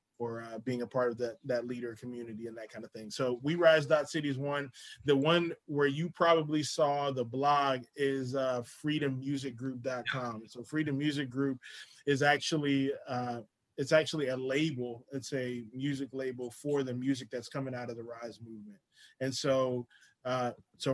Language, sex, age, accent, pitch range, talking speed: English, male, 20-39, American, 125-140 Hz, 170 wpm